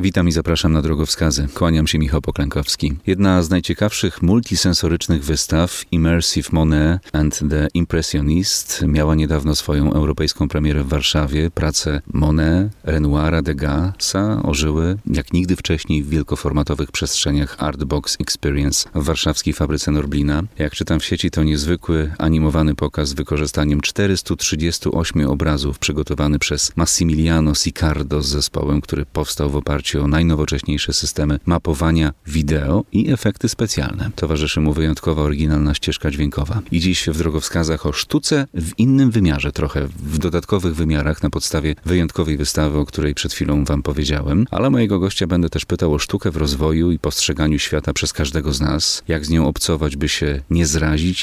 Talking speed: 150 wpm